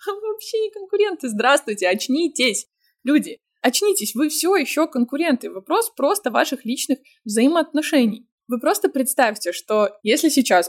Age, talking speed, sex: 20-39, 130 wpm, female